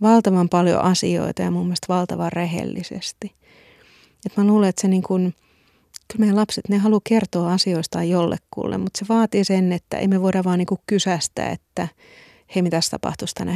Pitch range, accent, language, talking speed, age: 170-190 Hz, native, Finnish, 170 wpm, 30-49